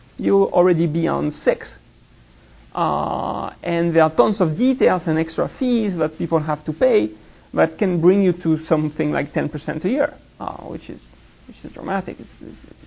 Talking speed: 175 wpm